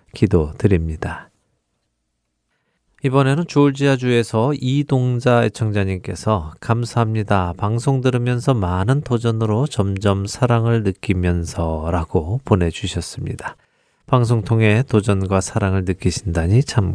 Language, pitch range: Korean, 95-120 Hz